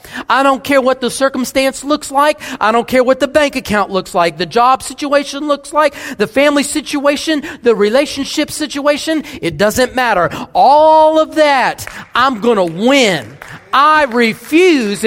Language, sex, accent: English, male, American